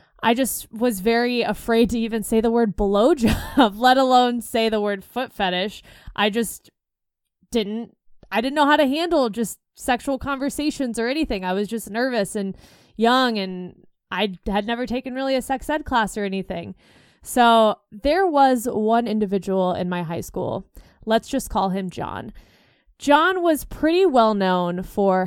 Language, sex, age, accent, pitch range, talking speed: English, female, 20-39, American, 200-255 Hz, 165 wpm